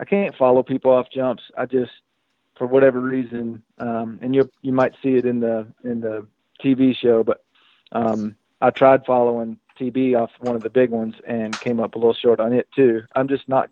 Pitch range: 115-130 Hz